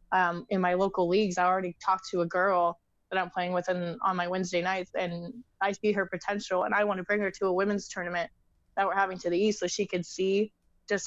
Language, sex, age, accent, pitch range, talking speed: English, female, 20-39, American, 180-195 Hz, 250 wpm